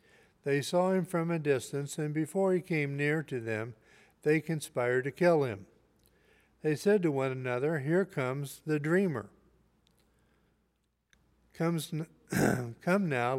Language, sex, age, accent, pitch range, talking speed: English, male, 60-79, American, 125-160 Hz, 135 wpm